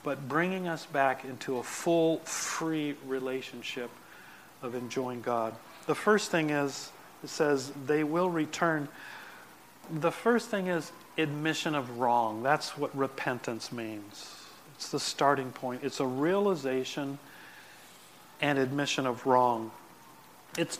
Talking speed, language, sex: 125 wpm, English, male